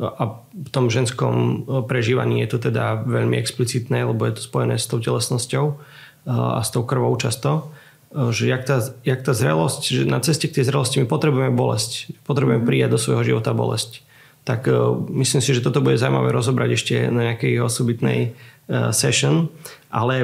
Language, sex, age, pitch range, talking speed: Slovak, male, 30-49, 110-135 Hz, 170 wpm